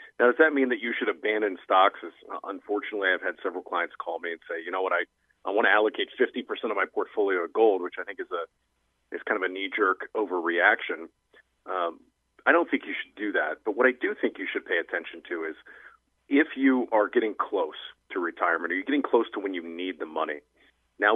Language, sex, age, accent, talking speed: English, male, 40-59, American, 225 wpm